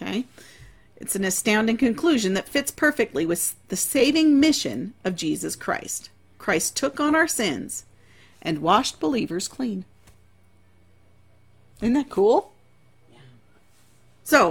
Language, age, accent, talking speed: English, 40-59, American, 115 wpm